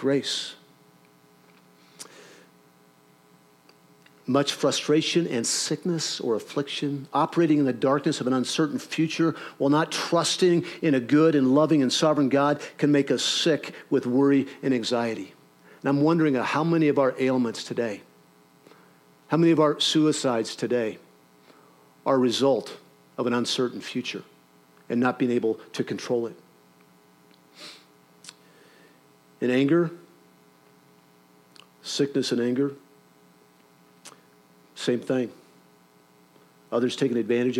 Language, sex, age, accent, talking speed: English, male, 50-69, American, 115 wpm